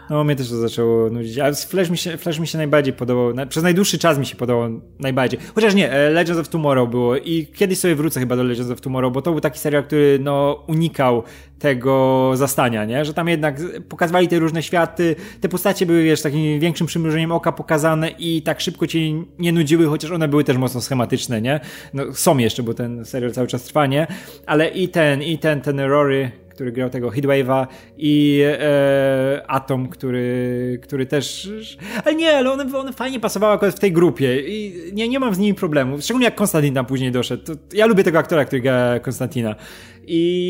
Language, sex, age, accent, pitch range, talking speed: Polish, male, 20-39, native, 135-180 Hz, 200 wpm